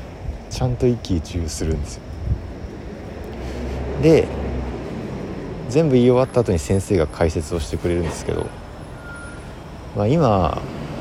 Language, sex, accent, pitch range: Japanese, male, native, 80-110 Hz